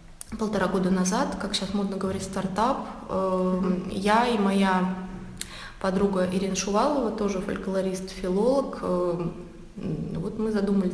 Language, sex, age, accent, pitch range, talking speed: Russian, female, 20-39, native, 185-215 Hz, 110 wpm